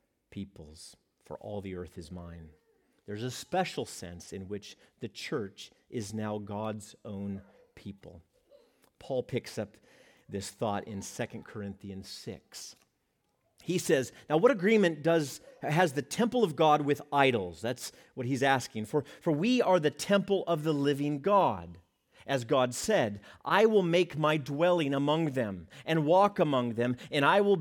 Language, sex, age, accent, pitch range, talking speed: English, male, 40-59, American, 115-175 Hz, 160 wpm